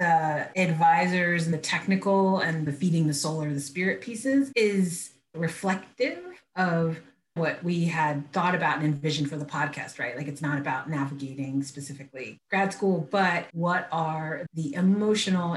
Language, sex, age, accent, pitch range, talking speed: English, female, 30-49, American, 145-180 Hz, 160 wpm